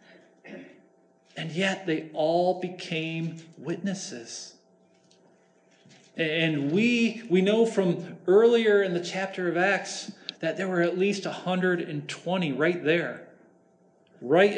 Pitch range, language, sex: 155-190 Hz, English, male